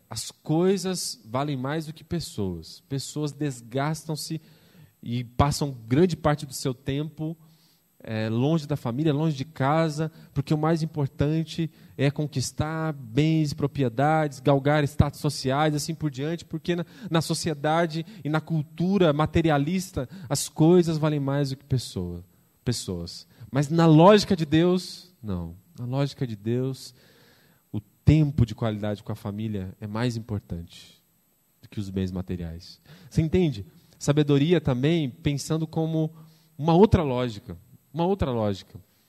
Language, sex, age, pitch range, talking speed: Portuguese, male, 20-39, 130-165 Hz, 135 wpm